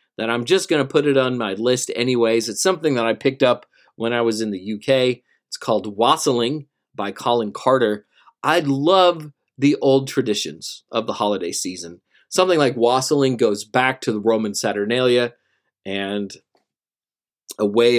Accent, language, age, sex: American, English, 40-59, male